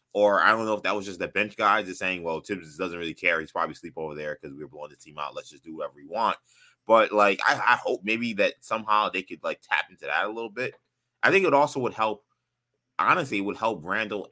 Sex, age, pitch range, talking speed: male, 20-39, 90-110 Hz, 270 wpm